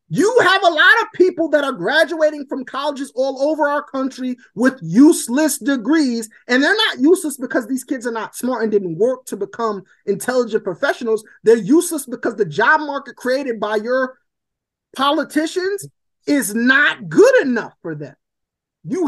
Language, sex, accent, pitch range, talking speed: English, male, American, 225-310 Hz, 165 wpm